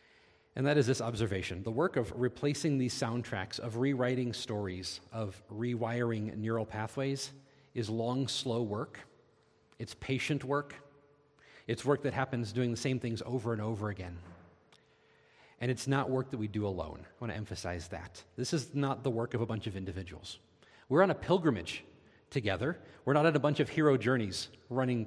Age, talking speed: 40-59, 175 wpm